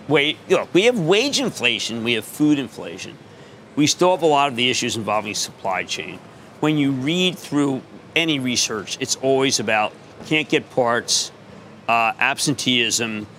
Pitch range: 125-165 Hz